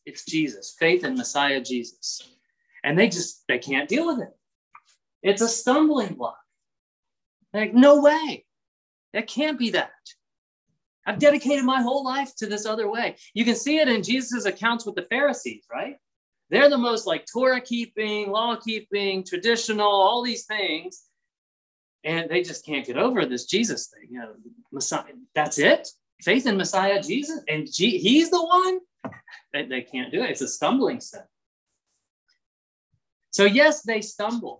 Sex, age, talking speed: male, 30-49, 160 wpm